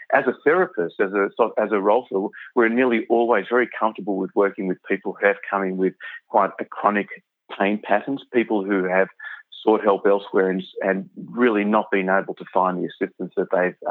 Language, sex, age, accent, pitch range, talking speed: English, male, 30-49, Australian, 100-120 Hz, 195 wpm